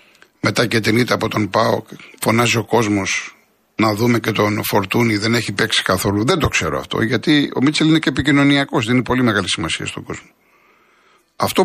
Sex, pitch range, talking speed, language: male, 110-160 Hz, 175 wpm, Greek